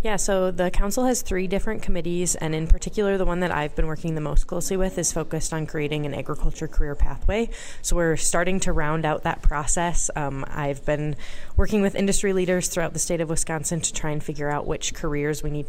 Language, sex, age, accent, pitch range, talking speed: English, female, 20-39, American, 145-175 Hz, 220 wpm